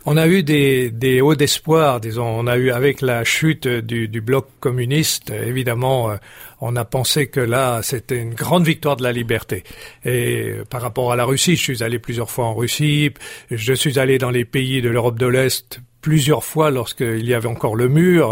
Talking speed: 205 wpm